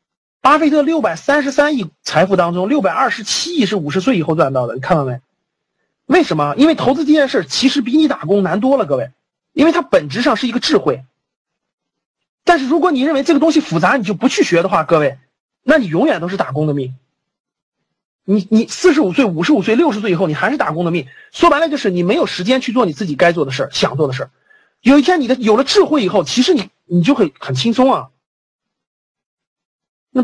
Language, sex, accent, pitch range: Chinese, male, native, 175-290 Hz